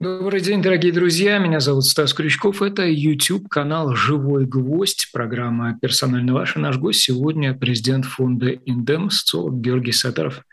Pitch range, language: 120-145 Hz, Russian